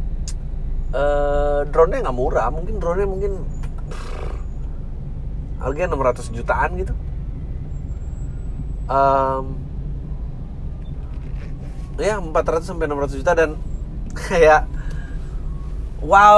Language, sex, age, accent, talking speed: Indonesian, male, 30-49, native, 75 wpm